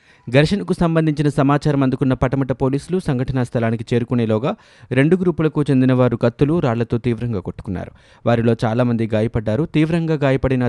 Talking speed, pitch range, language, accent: 130 wpm, 115-145 Hz, Telugu, native